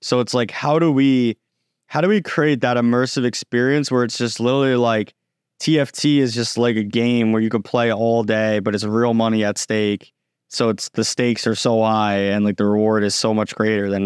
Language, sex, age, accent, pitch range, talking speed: English, male, 20-39, American, 110-125 Hz, 220 wpm